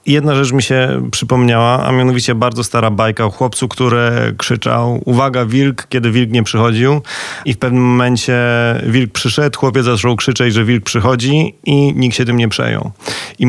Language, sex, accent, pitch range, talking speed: Polish, male, native, 125-150 Hz, 180 wpm